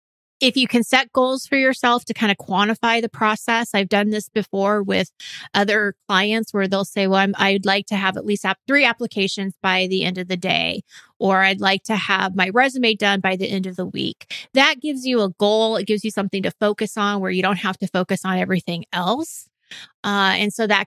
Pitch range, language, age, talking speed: 195-225 Hz, English, 30-49, 225 wpm